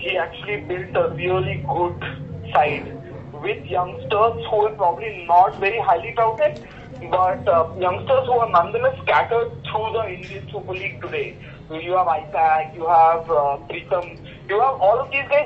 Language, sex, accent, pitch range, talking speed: English, male, Indian, 175-275 Hz, 165 wpm